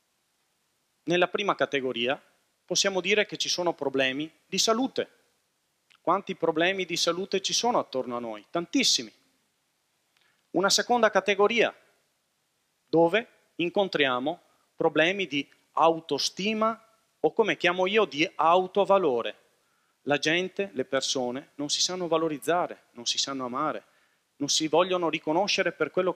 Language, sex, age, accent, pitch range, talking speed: Italian, male, 40-59, native, 155-200 Hz, 120 wpm